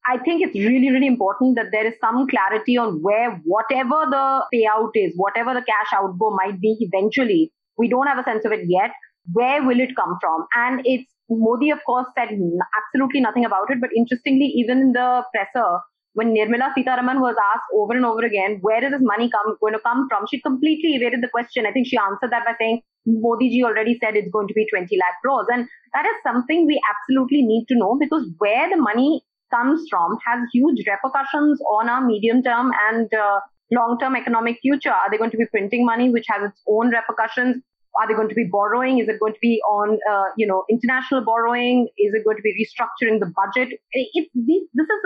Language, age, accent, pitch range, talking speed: English, 30-49, Indian, 215-265 Hz, 215 wpm